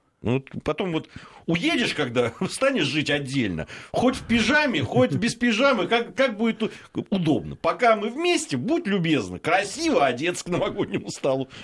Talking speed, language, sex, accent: 140 wpm, Russian, male, native